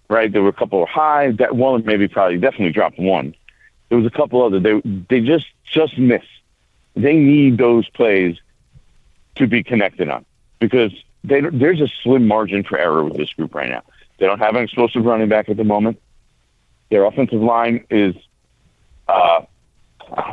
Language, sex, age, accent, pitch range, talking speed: English, male, 50-69, American, 90-125 Hz, 175 wpm